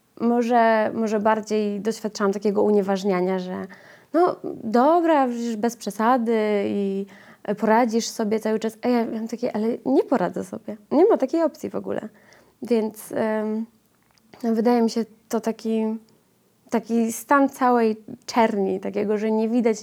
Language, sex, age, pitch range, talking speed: Polish, female, 20-39, 200-235 Hz, 140 wpm